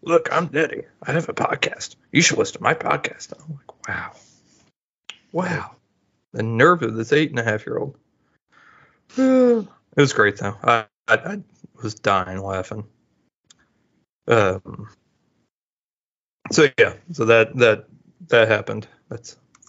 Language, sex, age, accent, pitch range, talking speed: English, male, 30-49, American, 115-150 Hz, 145 wpm